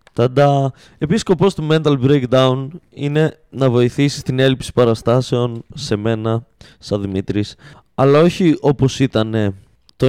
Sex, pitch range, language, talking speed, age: male, 115-150 Hz, Greek, 125 wpm, 20-39